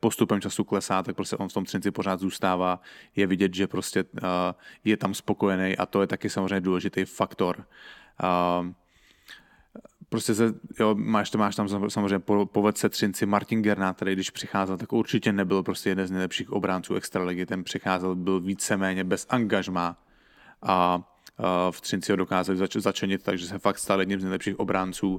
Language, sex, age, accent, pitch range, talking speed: English, male, 20-39, Czech, 95-105 Hz, 175 wpm